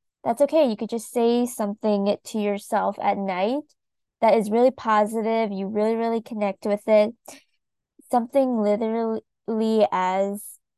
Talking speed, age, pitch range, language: 135 wpm, 20-39, 205-235 Hz, English